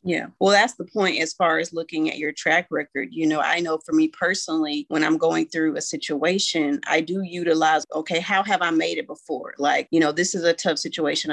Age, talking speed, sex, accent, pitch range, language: 30-49, 235 wpm, female, American, 160-200 Hz, English